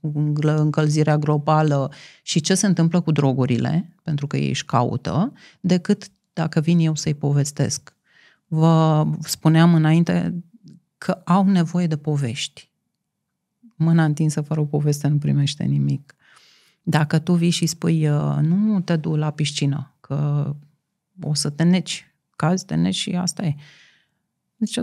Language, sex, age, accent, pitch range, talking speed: Romanian, female, 30-49, native, 155-215 Hz, 135 wpm